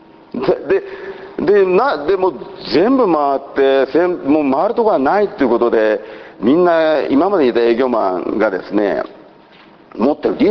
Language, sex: Japanese, male